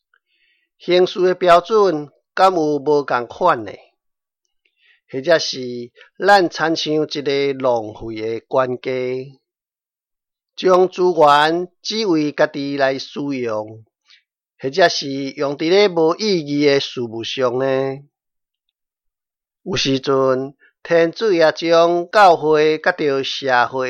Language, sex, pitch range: Chinese, male, 135-170 Hz